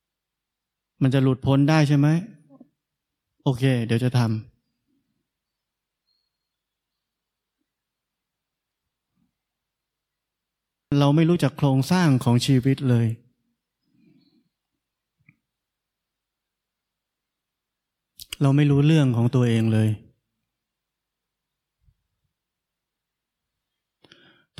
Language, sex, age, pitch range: Thai, male, 20-39, 120-140 Hz